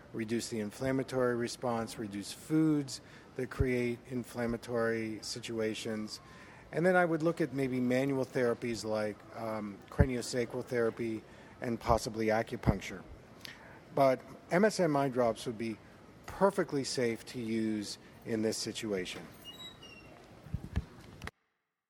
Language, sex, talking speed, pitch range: English, male, 105 wpm, 115-155 Hz